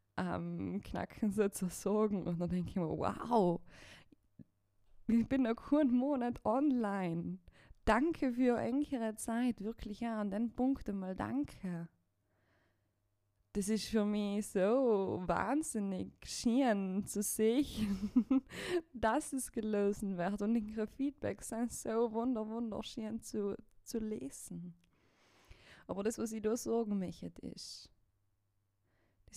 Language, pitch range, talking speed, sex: German, 175-220 Hz, 120 wpm, female